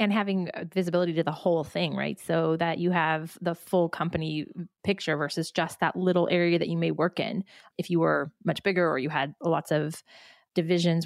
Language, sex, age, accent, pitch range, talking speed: English, female, 20-39, American, 165-185 Hz, 200 wpm